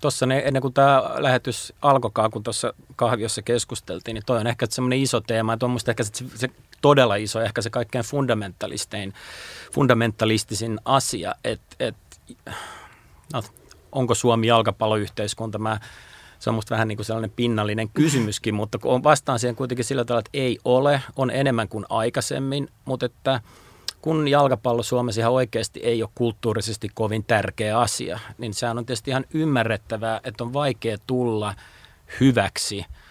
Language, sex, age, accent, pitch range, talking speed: Finnish, male, 30-49, native, 105-125 Hz, 150 wpm